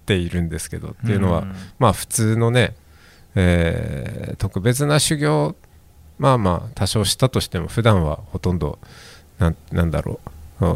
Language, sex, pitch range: Japanese, male, 85-115 Hz